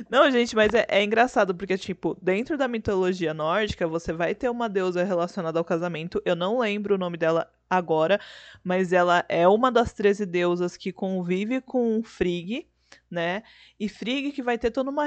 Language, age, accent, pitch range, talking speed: Portuguese, 20-39, Brazilian, 180-230 Hz, 185 wpm